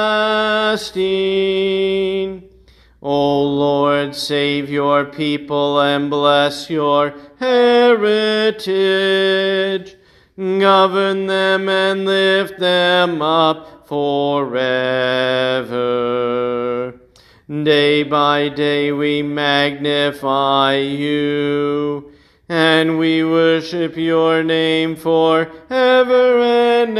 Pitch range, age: 145-190 Hz, 40-59